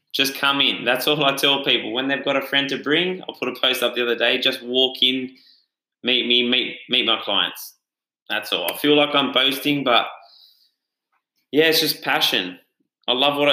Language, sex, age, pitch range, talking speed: English, male, 20-39, 120-145 Hz, 210 wpm